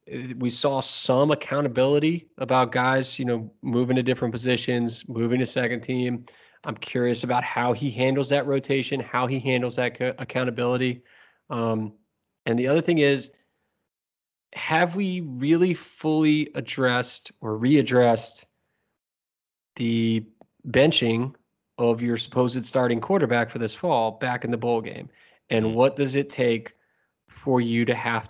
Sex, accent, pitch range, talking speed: male, American, 115-135 Hz, 140 wpm